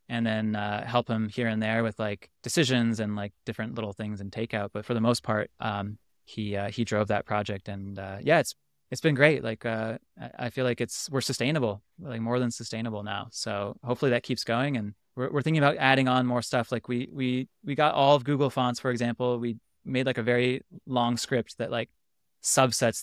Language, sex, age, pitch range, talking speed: English, male, 20-39, 110-130 Hz, 220 wpm